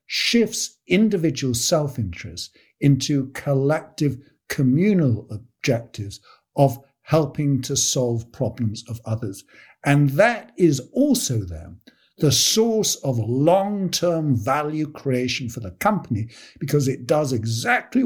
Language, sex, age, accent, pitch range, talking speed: English, male, 60-79, British, 120-170 Hz, 105 wpm